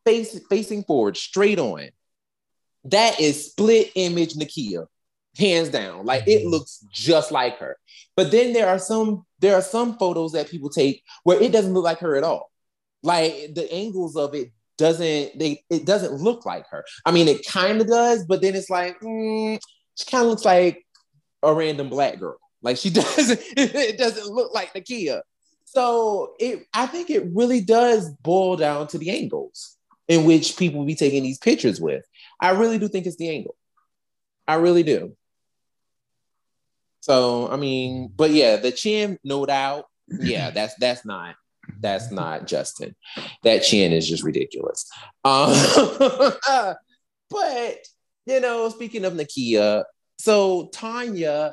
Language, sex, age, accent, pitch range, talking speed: English, male, 20-39, American, 145-225 Hz, 160 wpm